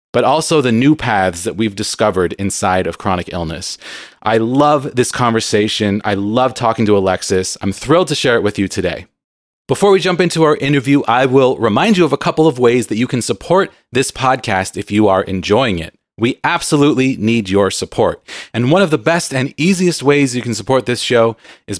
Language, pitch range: English, 105-145 Hz